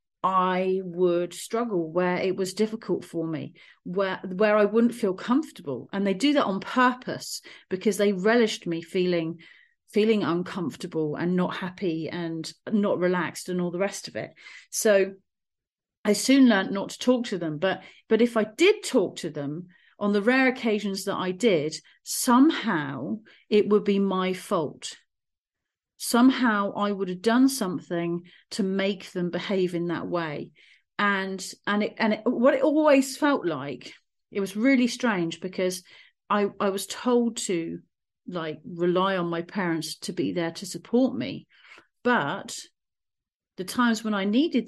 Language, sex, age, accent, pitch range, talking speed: English, female, 40-59, British, 180-230 Hz, 160 wpm